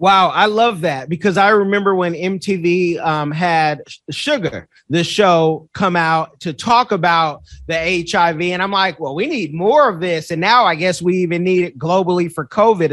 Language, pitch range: English, 175-225 Hz